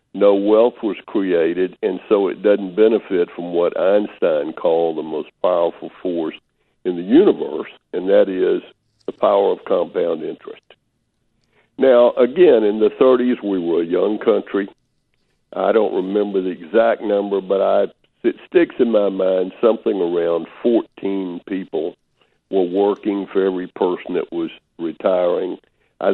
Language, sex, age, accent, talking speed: English, male, 60-79, American, 145 wpm